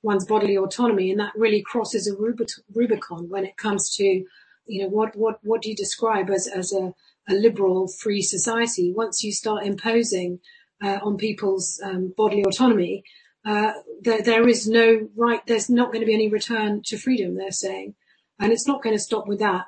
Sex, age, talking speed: female, 40-59, 190 wpm